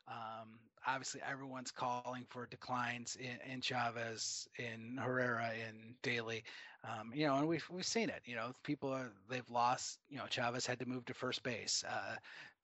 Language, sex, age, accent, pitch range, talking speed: English, male, 30-49, American, 120-135 Hz, 175 wpm